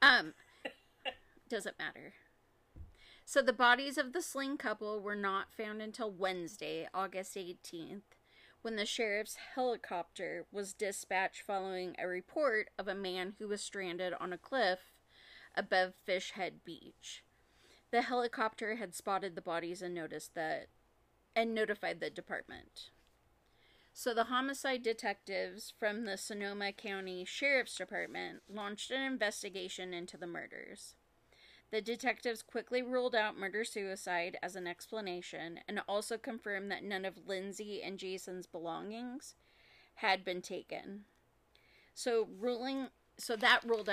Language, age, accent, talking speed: English, 30-49, American, 130 wpm